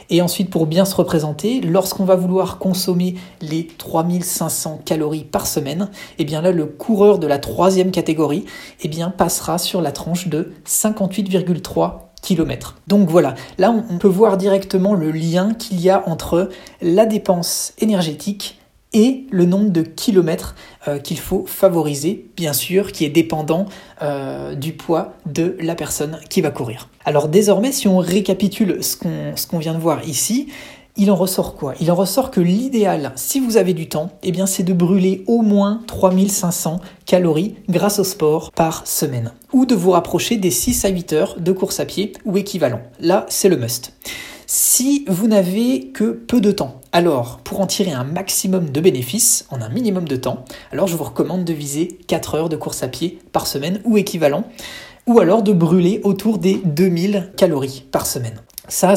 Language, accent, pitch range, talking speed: French, French, 160-200 Hz, 180 wpm